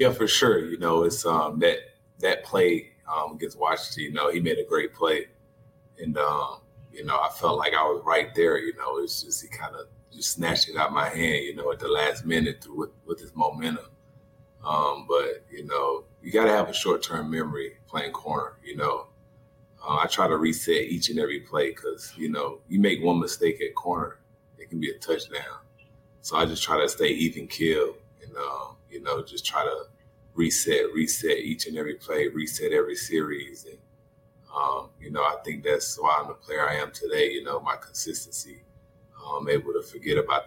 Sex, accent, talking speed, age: male, American, 210 wpm, 30-49